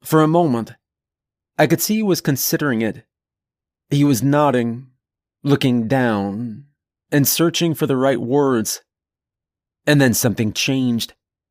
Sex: male